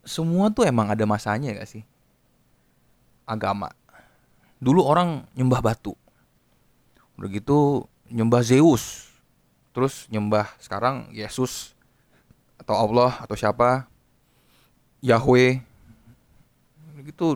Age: 20-39